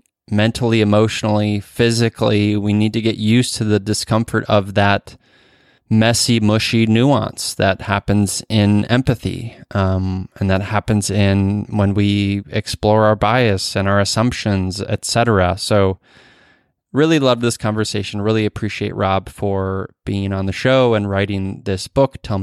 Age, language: 20-39, English